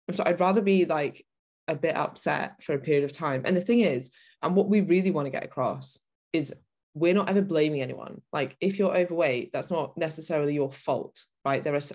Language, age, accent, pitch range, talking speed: English, 20-39, British, 140-175 Hz, 215 wpm